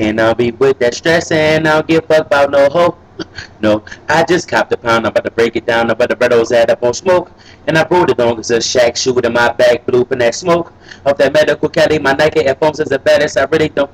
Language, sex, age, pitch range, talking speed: English, male, 30-49, 125-155 Hz, 270 wpm